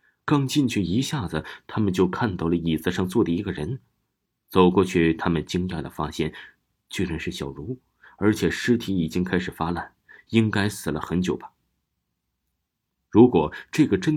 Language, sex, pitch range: Chinese, male, 80-110 Hz